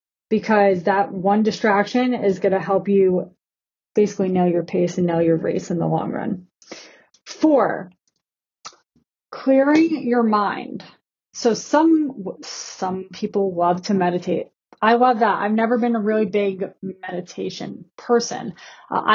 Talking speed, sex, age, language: 140 wpm, female, 20-39, English